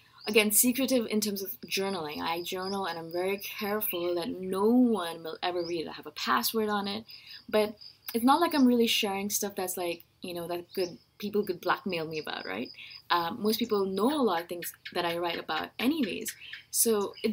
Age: 20-39